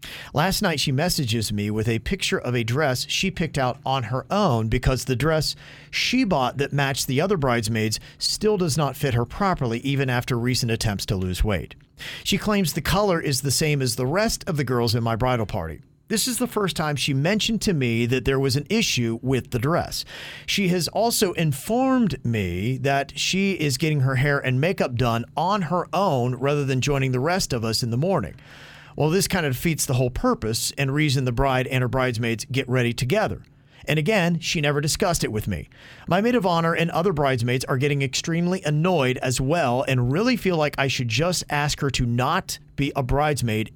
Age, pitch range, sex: 40-59, 125-165 Hz, male